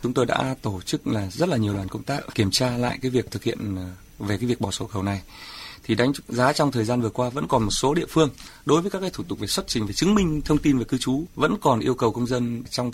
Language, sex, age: Vietnamese, male, 20-39